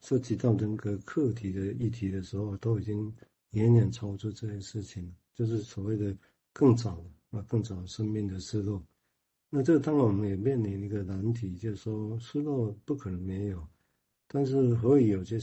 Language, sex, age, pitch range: Chinese, male, 50-69, 100-120 Hz